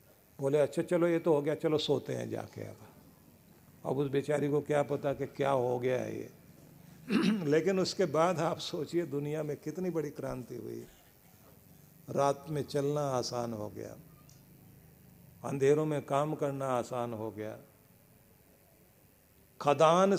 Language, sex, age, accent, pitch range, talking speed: Hindi, male, 50-69, native, 125-160 Hz, 145 wpm